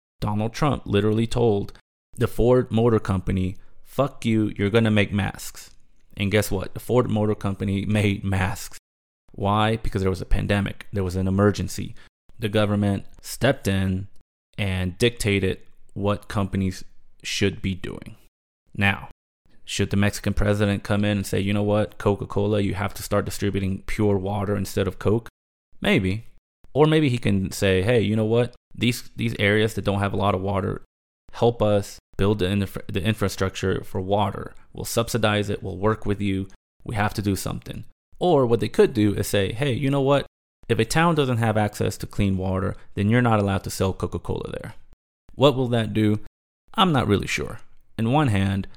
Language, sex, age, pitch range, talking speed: English, male, 20-39, 95-110 Hz, 180 wpm